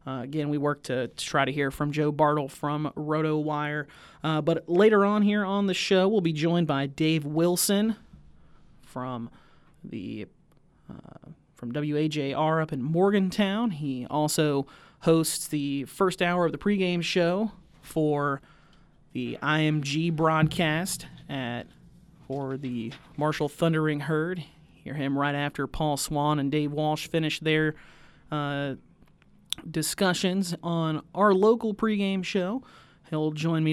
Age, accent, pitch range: 30-49, American, 145-170 Hz